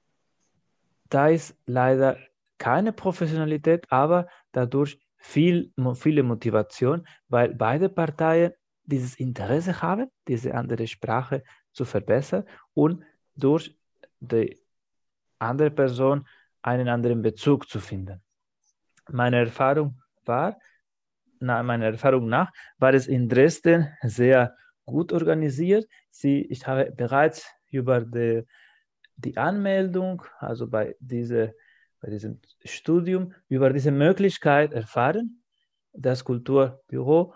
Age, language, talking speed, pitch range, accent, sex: 30-49, German, 105 wpm, 120-160 Hz, German, male